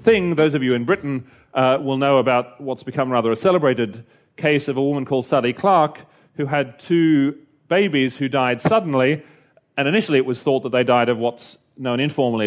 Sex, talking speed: male, 195 wpm